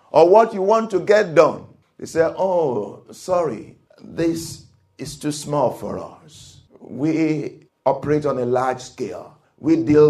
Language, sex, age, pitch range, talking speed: English, male, 50-69, 135-215 Hz, 150 wpm